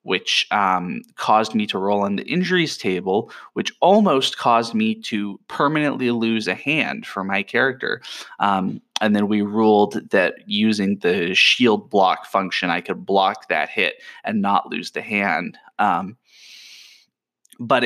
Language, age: English, 20-39